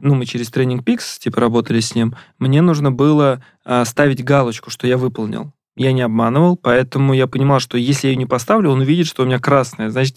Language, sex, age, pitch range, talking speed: Russian, male, 20-39, 120-145 Hz, 220 wpm